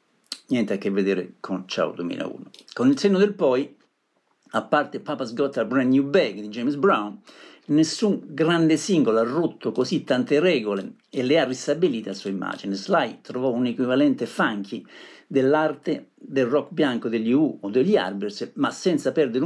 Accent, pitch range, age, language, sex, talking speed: native, 105-165 Hz, 50-69, Italian, male, 170 wpm